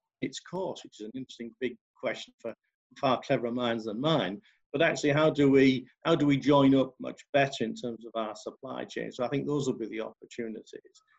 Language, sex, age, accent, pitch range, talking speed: English, male, 50-69, British, 125-155 Hz, 205 wpm